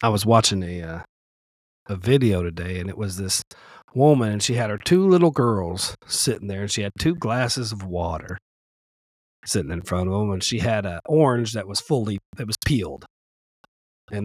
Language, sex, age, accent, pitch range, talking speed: English, male, 40-59, American, 95-125 Hz, 195 wpm